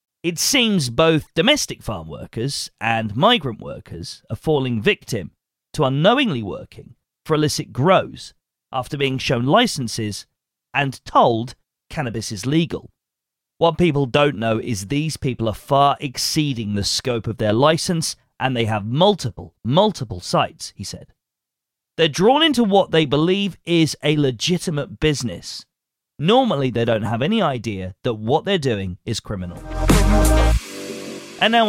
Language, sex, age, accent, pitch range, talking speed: English, male, 40-59, British, 115-160 Hz, 140 wpm